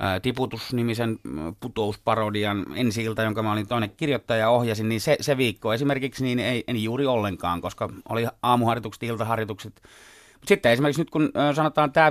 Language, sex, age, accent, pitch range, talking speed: Finnish, male, 30-49, native, 110-140 Hz, 145 wpm